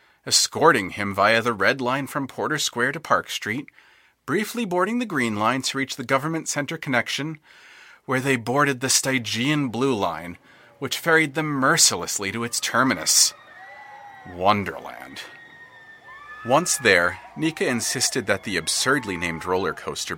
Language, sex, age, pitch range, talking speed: English, male, 40-59, 110-160 Hz, 145 wpm